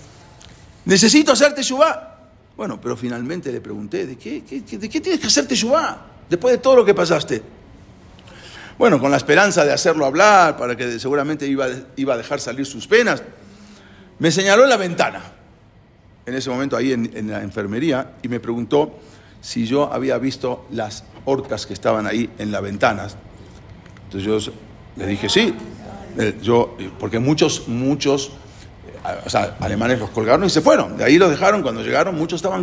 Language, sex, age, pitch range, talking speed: English, male, 50-69, 105-145 Hz, 170 wpm